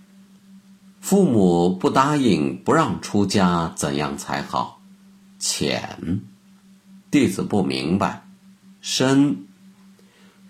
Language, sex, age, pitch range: Chinese, male, 50-69, 115-195 Hz